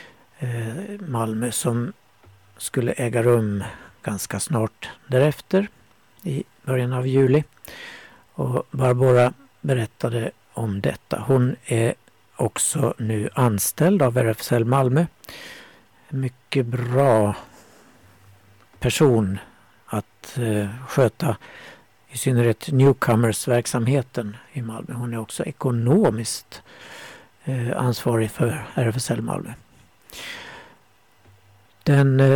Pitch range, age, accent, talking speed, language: 115-135 Hz, 60-79, native, 85 wpm, Swedish